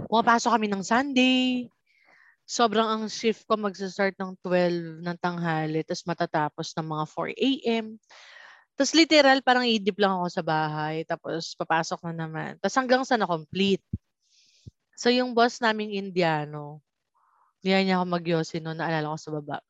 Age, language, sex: 20-39, English, female